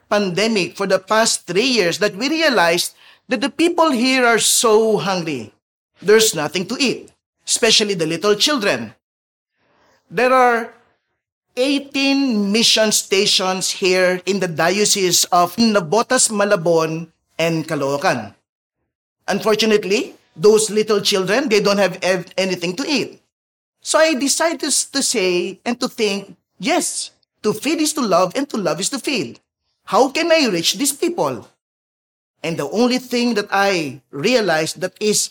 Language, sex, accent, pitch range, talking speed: English, male, Filipino, 185-235 Hz, 140 wpm